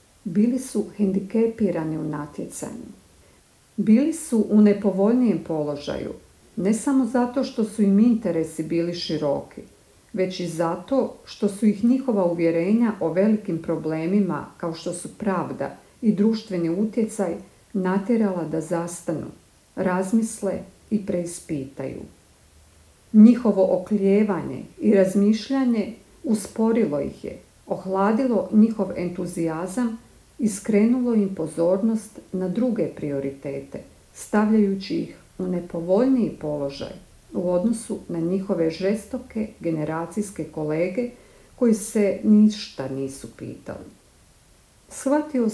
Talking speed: 100 wpm